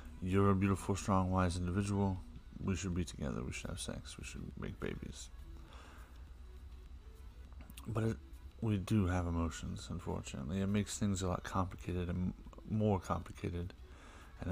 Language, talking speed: English, 145 wpm